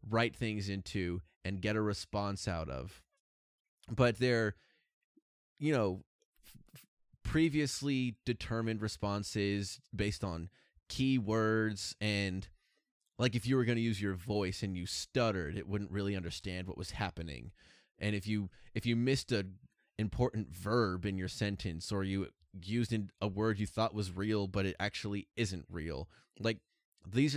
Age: 20-39